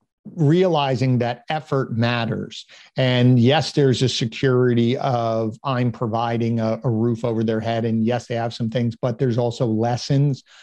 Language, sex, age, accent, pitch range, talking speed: English, male, 50-69, American, 120-150 Hz, 160 wpm